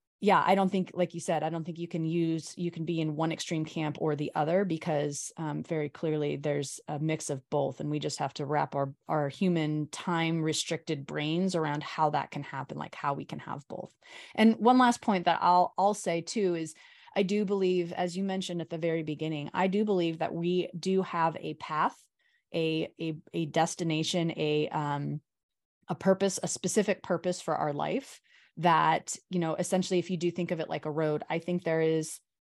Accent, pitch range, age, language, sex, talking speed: American, 155-180 Hz, 30-49, English, female, 210 wpm